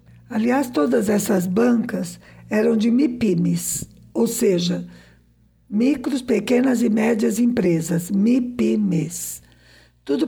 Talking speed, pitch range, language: 95 wpm, 165-235 Hz, Portuguese